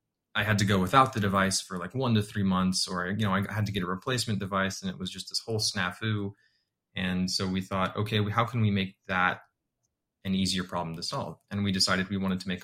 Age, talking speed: 20-39, 245 wpm